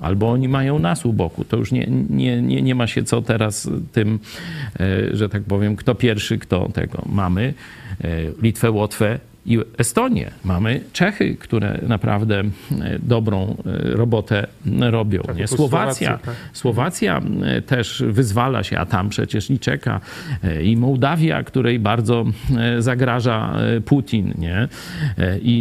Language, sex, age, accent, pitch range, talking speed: Polish, male, 40-59, native, 110-145 Hz, 125 wpm